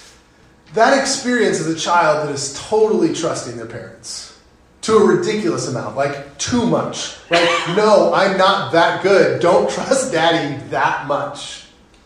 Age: 30-49